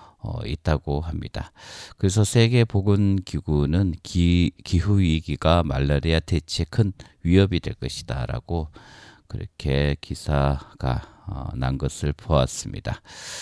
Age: 40-59